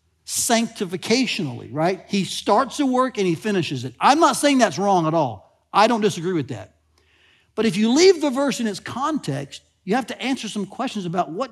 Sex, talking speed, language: male, 205 wpm, English